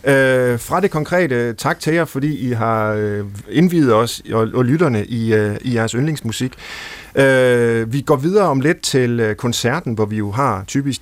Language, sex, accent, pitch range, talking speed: Danish, male, native, 100-130 Hz, 150 wpm